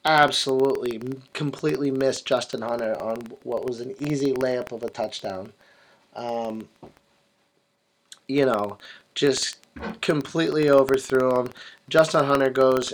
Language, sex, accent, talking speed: English, male, American, 110 wpm